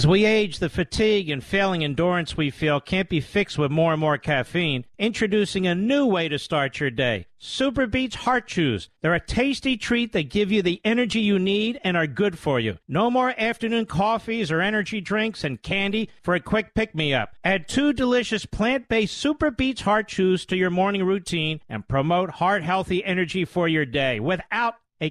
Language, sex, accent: English, male, American